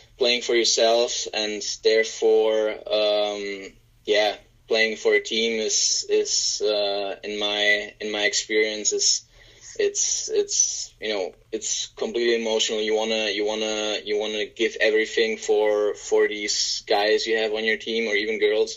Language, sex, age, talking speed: English, male, 10-29, 150 wpm